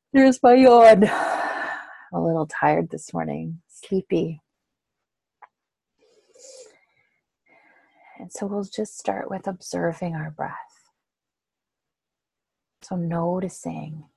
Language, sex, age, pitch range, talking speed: English, female, 30-49, 155-190 Hz, 80 wpm